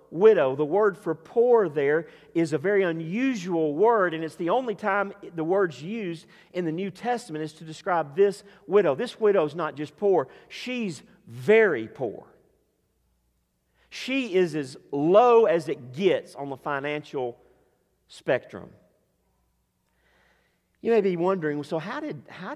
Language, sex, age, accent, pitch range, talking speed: English, male, 40-59, American, 130-200 Hz, 150 wpm